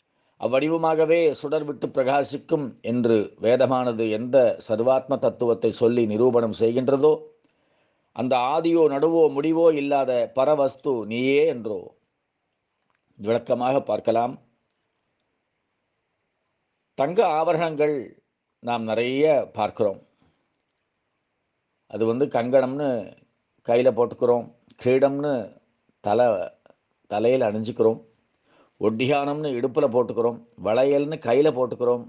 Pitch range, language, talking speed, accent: 120-155 Hz, Tamil, 80 wpm, native